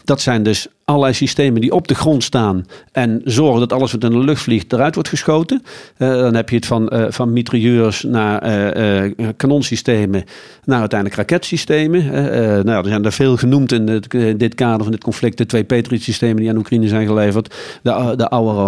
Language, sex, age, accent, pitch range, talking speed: Dutch, male, 50-69, Dutch, 110-140 Hz, 200 wpm